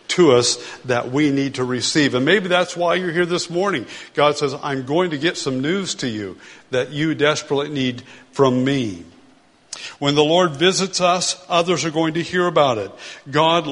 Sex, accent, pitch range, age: male, American, 135-175 Hz, 60-79